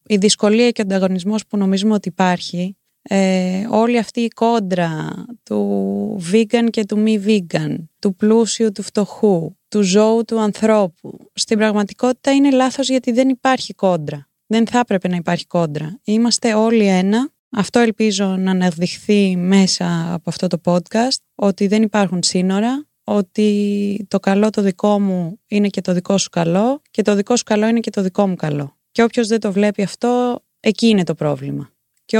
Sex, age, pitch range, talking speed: female, 20-39, 180-225 Hz, 170 wpm